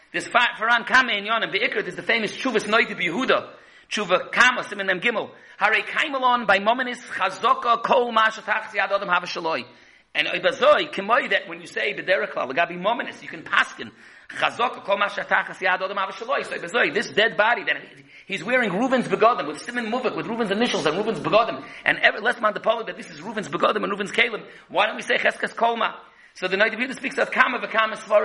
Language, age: English, 40-59